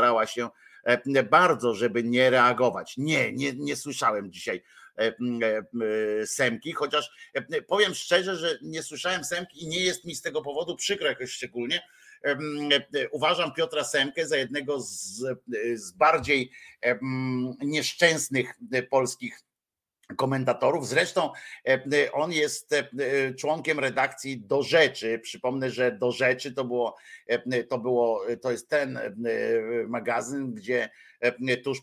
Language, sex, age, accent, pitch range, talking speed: Polish, male, 50-69, native, 110-140 Hz, 115 wpm